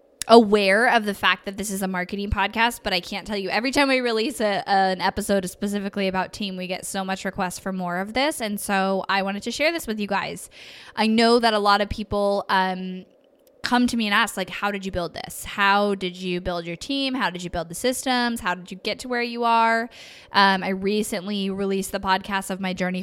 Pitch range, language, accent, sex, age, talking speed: 180-215 Hz, English, American, female, 10-29, 240 wpm